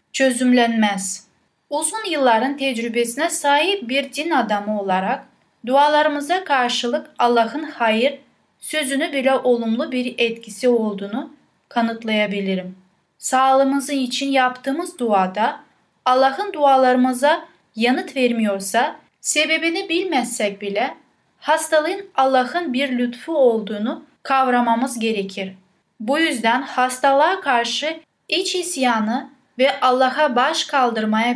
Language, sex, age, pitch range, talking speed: Turkish, female, 10-29, 230-285 Hz, 90 wpm